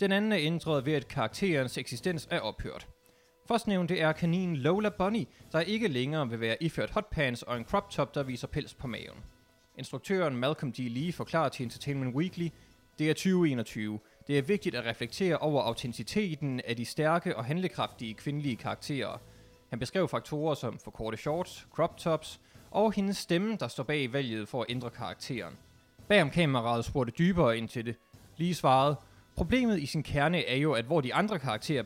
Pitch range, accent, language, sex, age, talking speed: 120-175 Hz, native, Danish, male, 20-39, 180 wpm